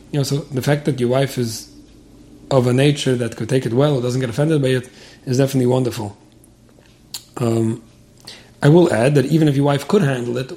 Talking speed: 215 wpm